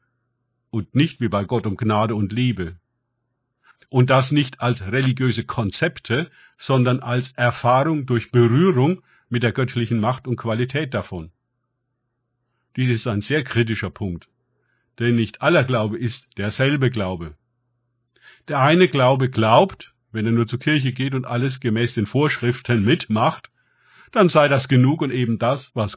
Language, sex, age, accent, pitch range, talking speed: German, male, 50-69, German, 115-140 Hz, 150 wpm